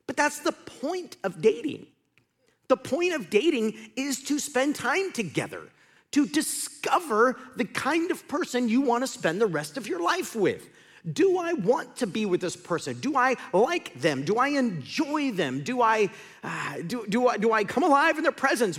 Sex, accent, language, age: male, American, English, 40-59